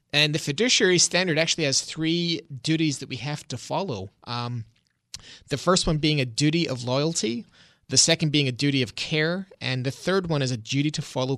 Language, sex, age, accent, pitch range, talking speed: English, male, 30-49, American, 130-155 Hz, 200 wpm